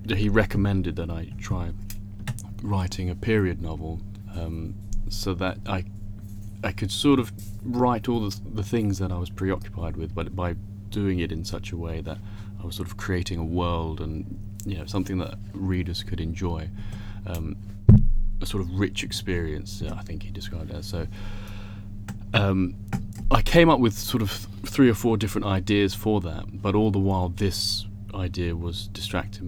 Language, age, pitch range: English, 30-49, 90-100 Hz